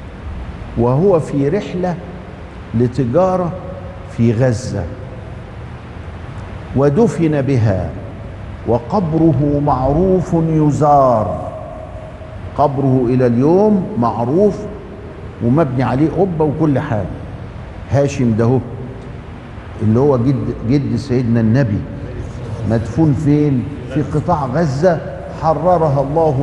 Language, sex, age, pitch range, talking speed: Arabic, male, 50-69, 105-155 Hz, 80 wpm